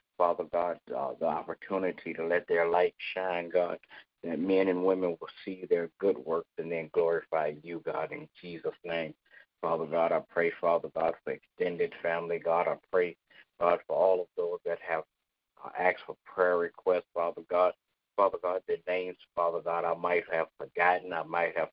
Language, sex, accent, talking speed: English, male, American, 185 wpm